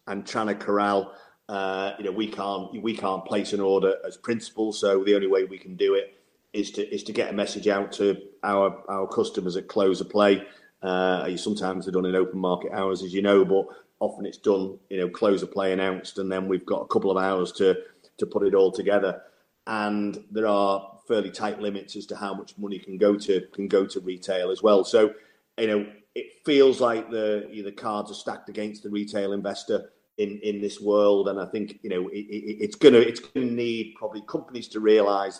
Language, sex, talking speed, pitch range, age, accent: English, male, 220 wpm, 100-110 Hz, 40-59, British